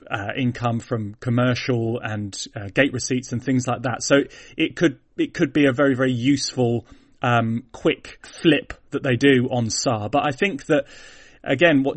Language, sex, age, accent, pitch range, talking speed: English, male, 30-49, British, 125-145 Hz, 180 wpm